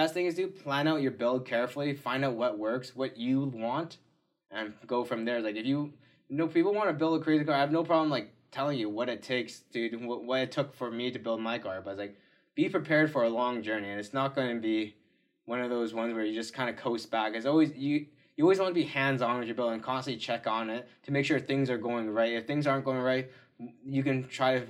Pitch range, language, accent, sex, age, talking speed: 115-140 Hz, English, American, male, 20-39, 270 wpm